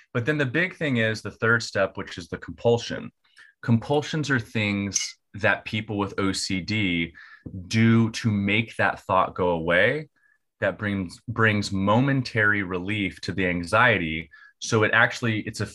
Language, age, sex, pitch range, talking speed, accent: English, 30-49, male, 95-120 Hz, 150 wpm, American